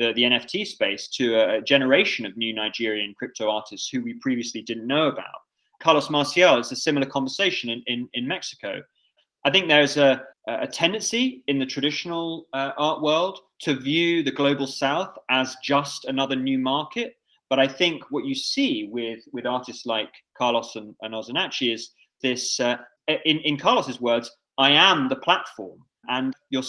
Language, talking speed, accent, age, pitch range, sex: English, 175 wpm, British, 20-39, 120-155 Hz, male